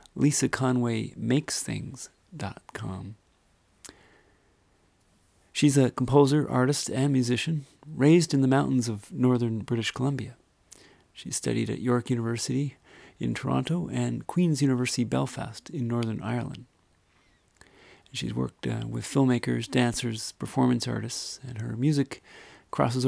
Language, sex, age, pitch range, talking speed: English, male, 40-59, 110-135 Hz, 105 wpm